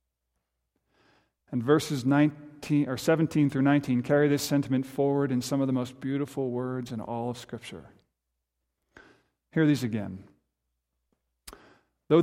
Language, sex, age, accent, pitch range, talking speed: English, male, 50-69, American, 95-145 Hz, 130 wpm